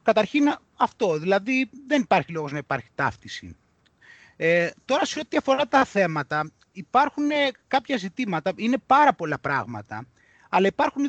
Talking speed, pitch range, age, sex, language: 135 wpm, 160-260 Hz, 30-49, male, Greek